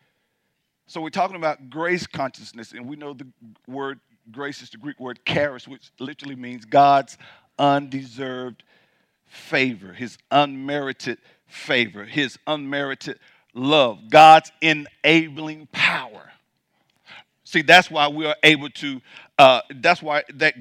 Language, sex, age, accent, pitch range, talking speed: English, male, 50-69, American, 140-180 Hz, 125 wpm